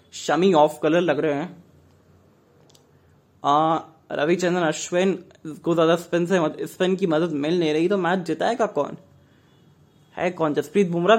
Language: Hindi